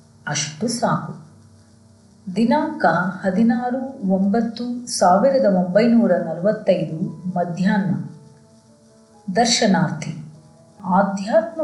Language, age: Kannada, 30-49